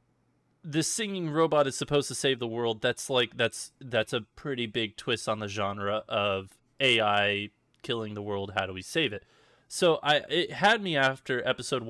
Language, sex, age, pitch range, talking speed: English, male, 20-39, 105-125 Hz, 185 wpm